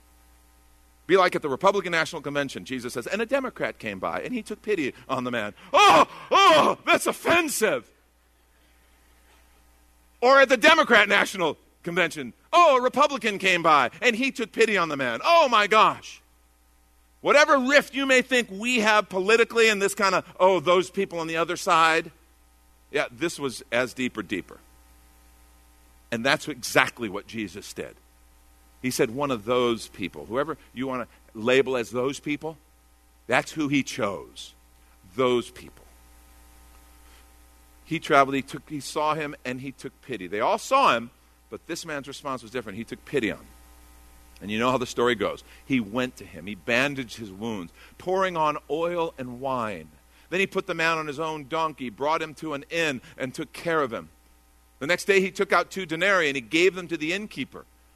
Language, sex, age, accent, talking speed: English, male, 50-69, American, 185 wpm